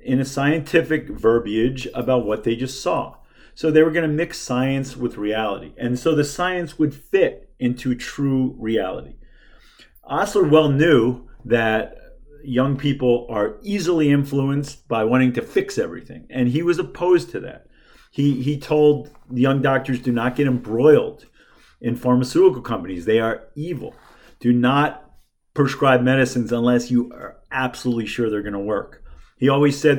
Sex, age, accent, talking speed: male, 40-59, American, 155 wpm